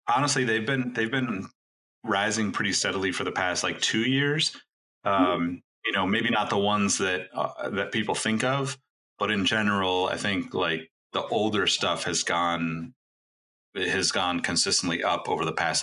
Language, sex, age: English, male, 30-49